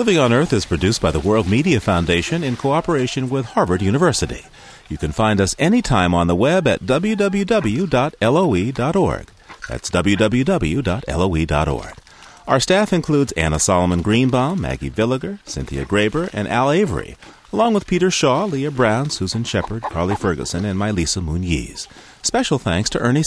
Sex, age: male, 40-59